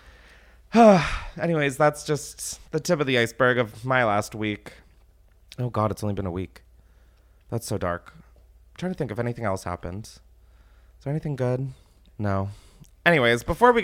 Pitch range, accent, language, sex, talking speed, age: 100-140 Hz, American, English, male, 165 wpm, 30-49